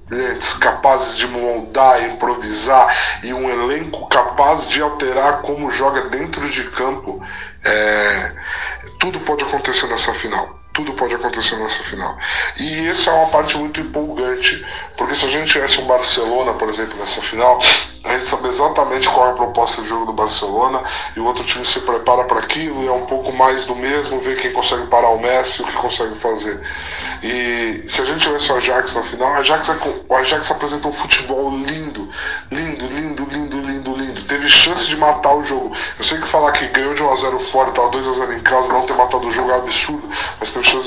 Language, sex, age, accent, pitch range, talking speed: Portuguese, male, 20-39, Brazilian, 125-150 Hz, 180 wpm